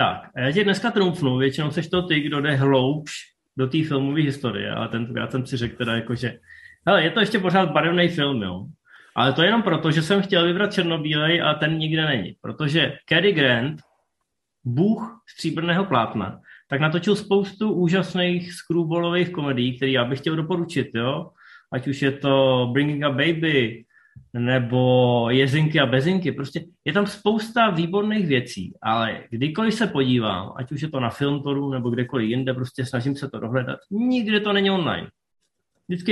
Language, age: Czech, 20-39